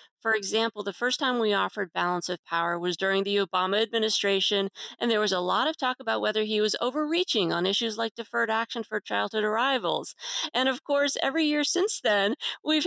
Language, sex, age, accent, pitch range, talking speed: English, female, 40-59, American, 200-270 Hz, 200 wpm